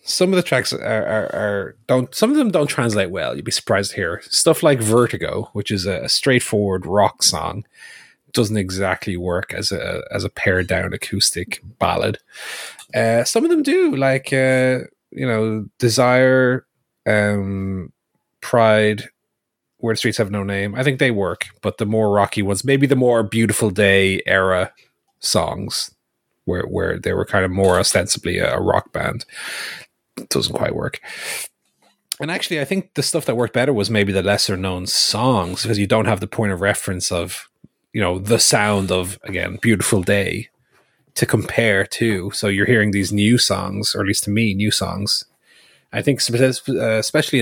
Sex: male